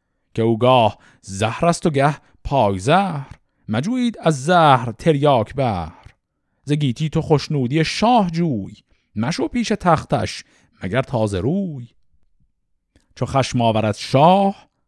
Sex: male